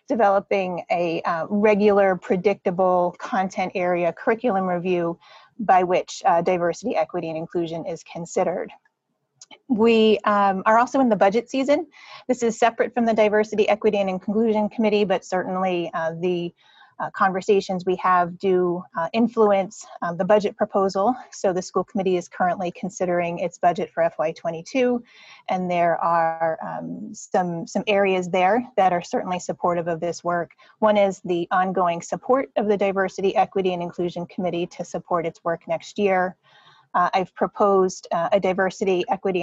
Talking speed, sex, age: 155 wpm, female, 30-49